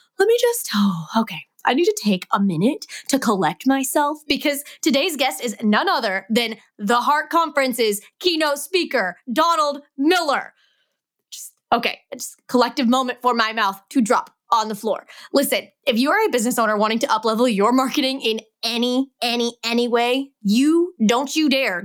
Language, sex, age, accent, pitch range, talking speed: English, female, 20-39, American, 215-280 Hz, 175 wpm